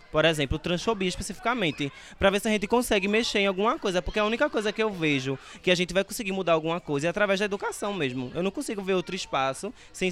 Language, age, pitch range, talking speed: Portuguese, 20-39, 160-205 Hz, 245 wpm